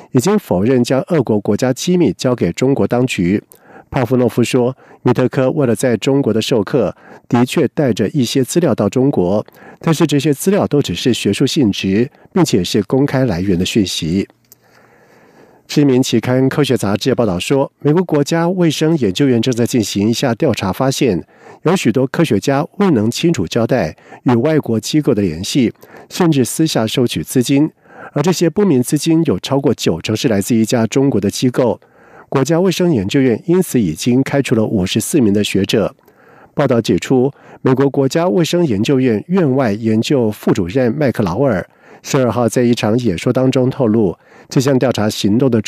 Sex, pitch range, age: male, 115-150 Hz, 50-69